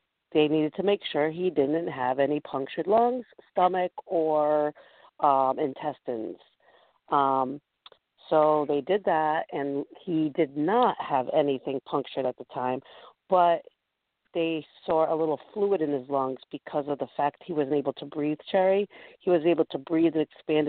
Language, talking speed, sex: English, 160 wpm, female